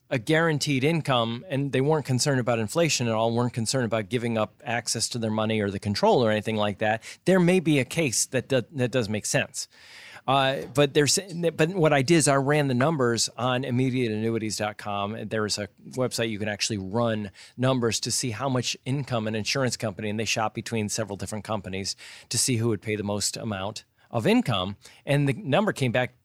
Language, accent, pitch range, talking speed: English, American, 115-150 Hz, 205 wpm